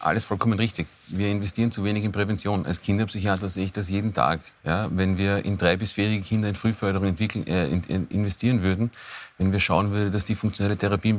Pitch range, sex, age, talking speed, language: 95-105 Hz, male, 40-59, 195 wpm, German